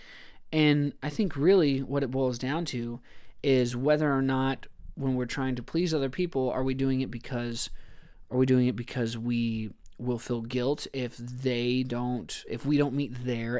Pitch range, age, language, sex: 120-140 Hz, 20-39, English, male